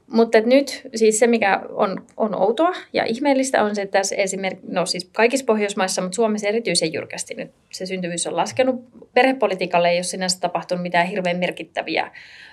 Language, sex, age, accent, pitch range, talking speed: Finnish, female, 30-49, native, 185-225 Hz, 175 wpm